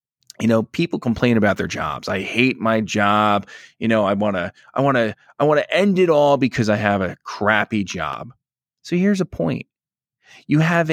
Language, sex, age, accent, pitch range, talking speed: English, male, 20-39, American, 120-185 Hz, 180 wpm